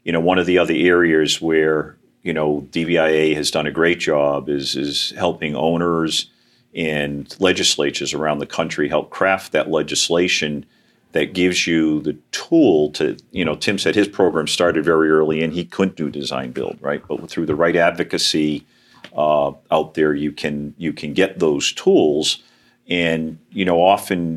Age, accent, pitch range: 50-69, American, 75-85 Hz